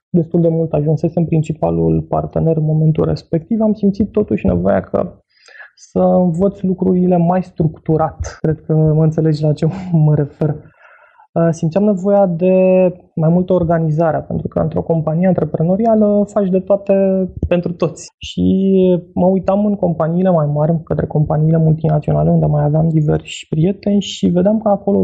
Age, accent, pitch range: 20-39, native, 155-185 Hz